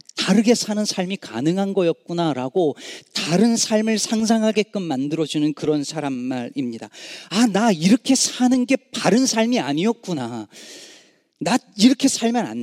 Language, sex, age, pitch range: Korean, male, 40-59, 130-190 Hz